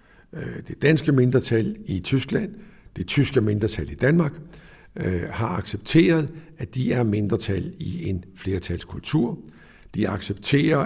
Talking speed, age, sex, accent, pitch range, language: 115 wpm, 60-79, male, native, 100-145 Hz, Danish